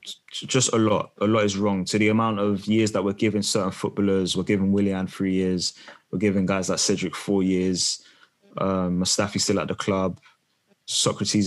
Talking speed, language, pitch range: 195 wpm, English, 100-115 Hz